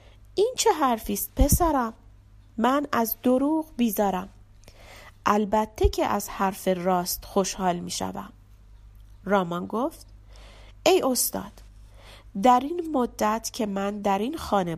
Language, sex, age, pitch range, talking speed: Persian, female, 30-49, 175-275 Hz, 115 wpm